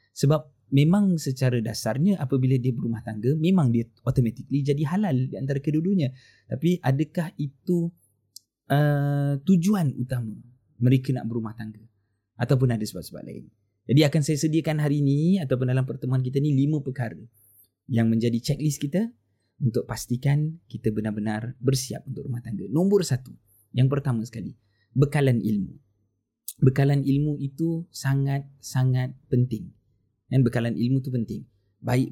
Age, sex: 20-39, male